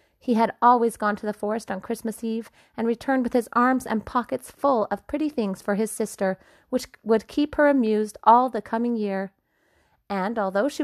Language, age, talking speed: English, 30-49, 200 wpm